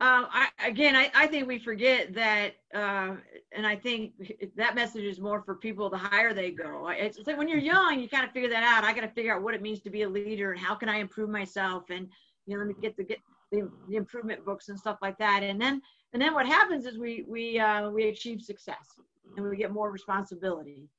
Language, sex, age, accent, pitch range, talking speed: English, female, 50-69, American, 200-245 Hz, 245 wpm